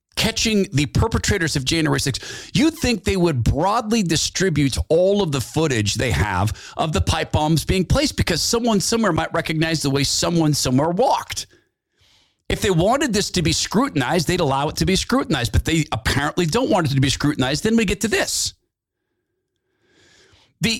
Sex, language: male, English